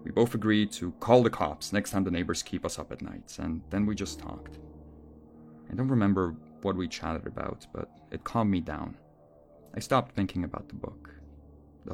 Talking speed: 200 wpm